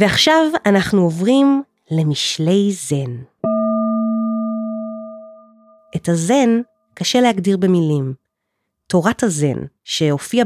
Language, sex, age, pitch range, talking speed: Hebrew, female, 30-49, 165-220 Hz, 75 wpm